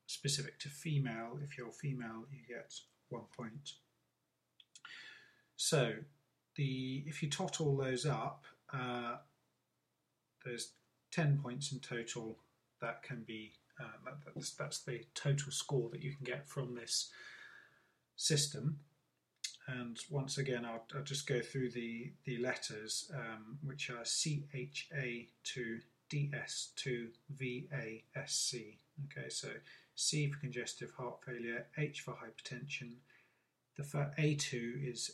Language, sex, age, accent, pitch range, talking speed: English, male, 30-49, British, 120-145 Hz, 135 wpm